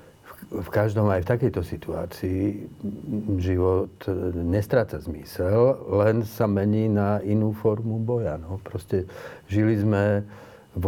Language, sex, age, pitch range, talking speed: Slovak, male, 50-69, 95-110 Hz, 110 wpm